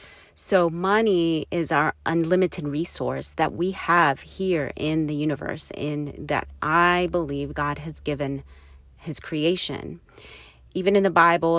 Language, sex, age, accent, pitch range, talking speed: English, female, 30-49, American, 140-175 Hz, 135 wpm